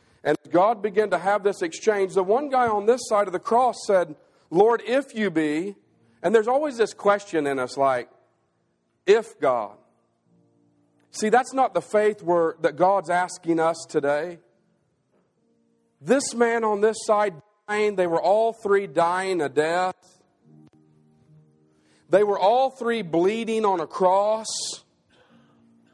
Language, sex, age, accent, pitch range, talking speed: English, male, 40-59, American, 140-230 Hz, 145 wpm